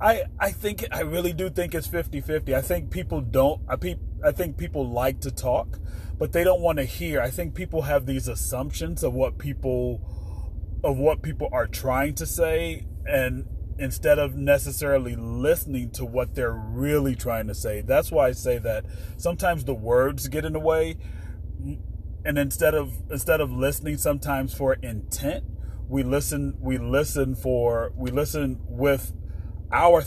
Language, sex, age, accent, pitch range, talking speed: English, male, 30-49, American, 85-135 Hz, 170 wpm